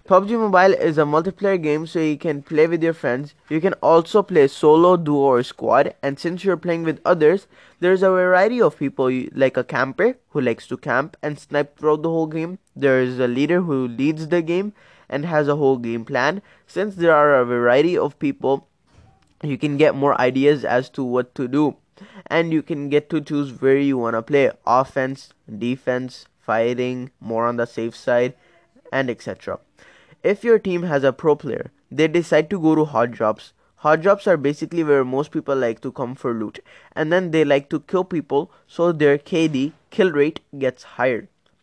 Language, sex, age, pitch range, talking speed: English, male, 20-39, 135-165 Hz, 200 wpm